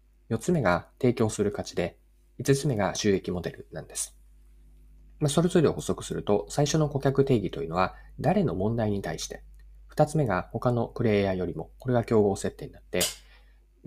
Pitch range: 80-135 Hz